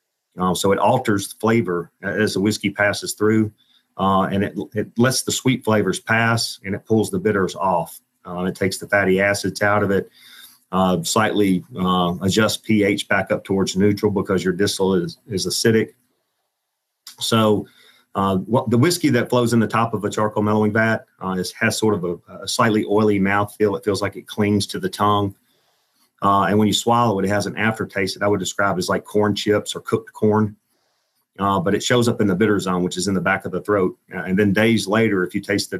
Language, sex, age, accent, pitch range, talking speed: English, male, 40-59, American, 95-110 Hz, 220 wpm